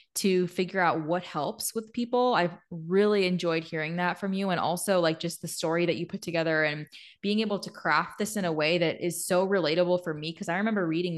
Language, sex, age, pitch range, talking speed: English, female, 20-39, 165-190 Hz, 230 wpm